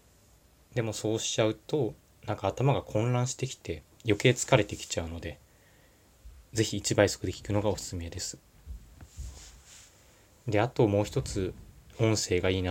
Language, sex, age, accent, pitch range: Japanese, male, 20-39, native, 90-110 Hz